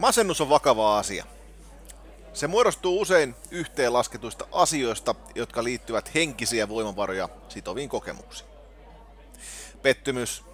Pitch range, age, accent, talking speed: 110-140 Hz, 30-49, native, 90 wpm